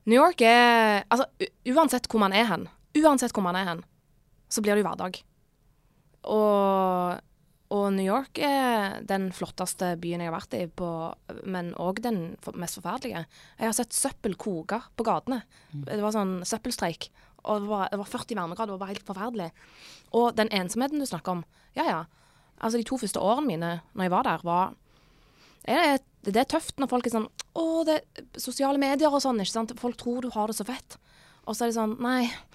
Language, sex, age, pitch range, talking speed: English, female, 20-39, 185-240 Hz, 195 wpm